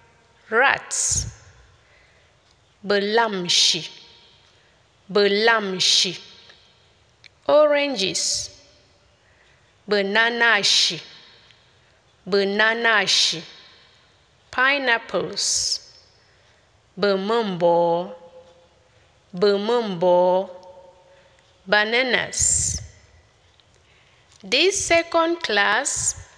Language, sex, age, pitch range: English, female, 20-39, 185-260 Hz